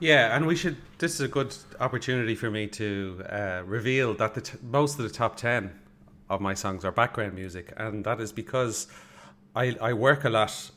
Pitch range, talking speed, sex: 100-120 Hz, 205 wpm, male